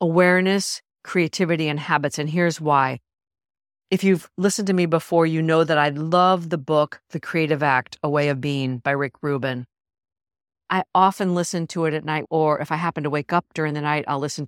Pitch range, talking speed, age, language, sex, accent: 145-175 Hz, 205 wpm, 50-69, English, female, American